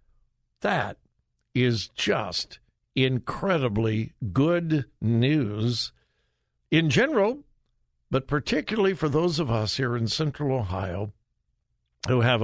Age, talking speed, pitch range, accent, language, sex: 60-79, 95 wpm, 110-150 Hz, American, English, male